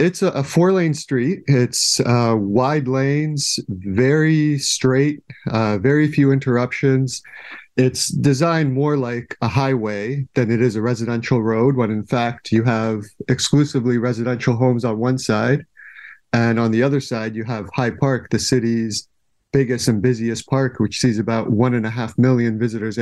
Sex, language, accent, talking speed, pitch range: male, English, American, 160 wpm, 115-135 Hz